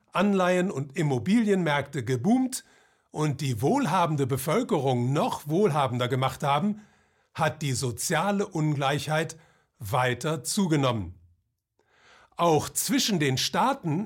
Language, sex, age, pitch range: German, male, 50-69, 135-195 Hz